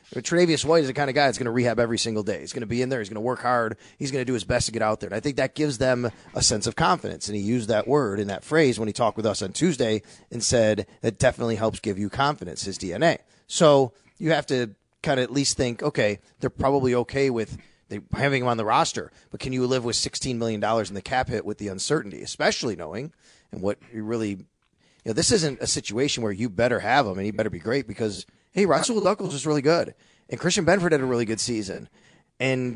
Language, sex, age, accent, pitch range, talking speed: English, male, 30-49, American, 115-150 Hz, 260 wpm